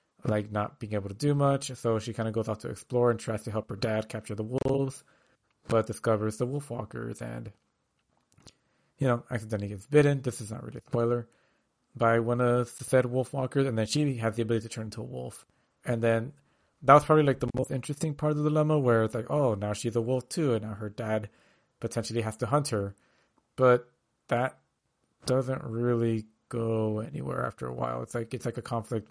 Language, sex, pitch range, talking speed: English, male, 110-135 Hz, 215 wpm